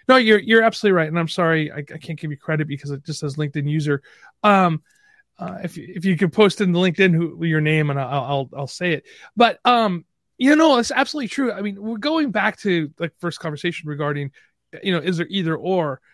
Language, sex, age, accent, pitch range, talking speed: English, male, 30-49, American, 145-205 Hz, 230 wpm